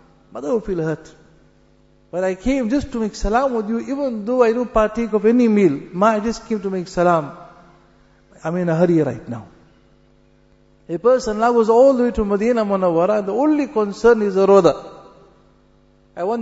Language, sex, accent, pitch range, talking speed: English, male, Indian, 170-215 Hz, 190 wpm